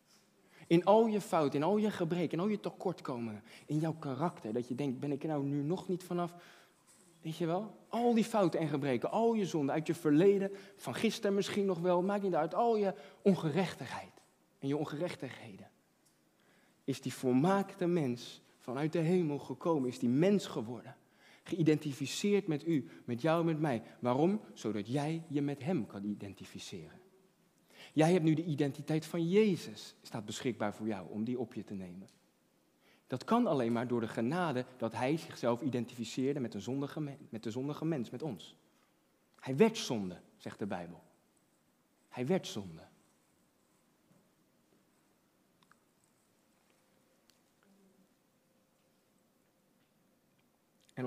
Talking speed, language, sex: 150 wpm, Dutch, male